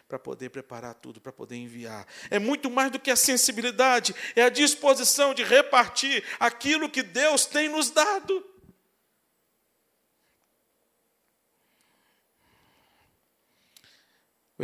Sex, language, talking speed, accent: male, Portuguese, 105 wpm, Brazilian